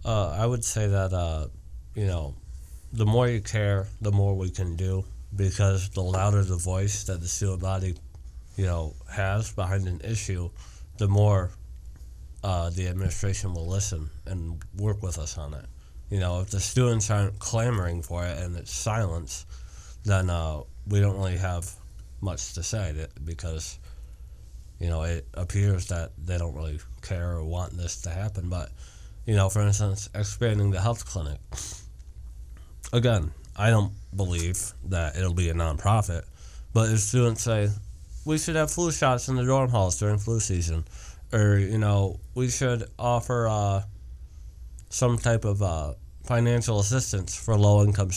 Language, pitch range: English, 80-105 Hz